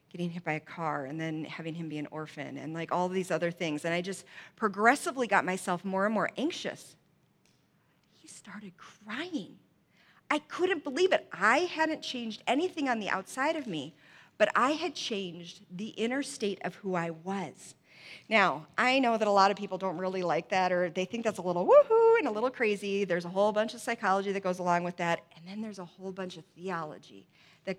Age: 40-59